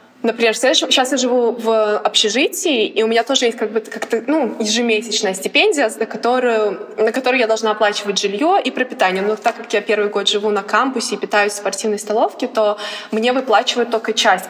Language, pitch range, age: Russian, 205-240 Hz, 20-39